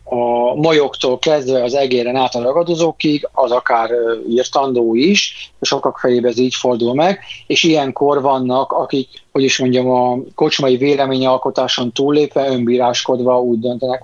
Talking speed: 140 wpm